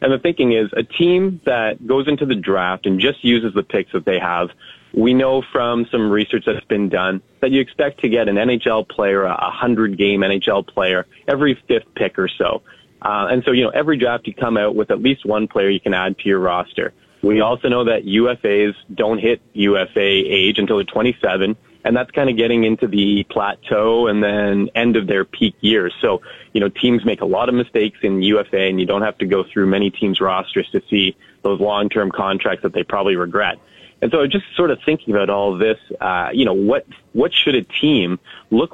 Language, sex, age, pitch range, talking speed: English, male, 30-49, 100-120 Hz, 215 wpm